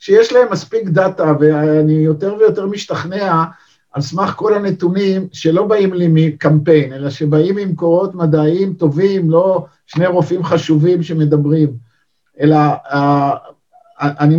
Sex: male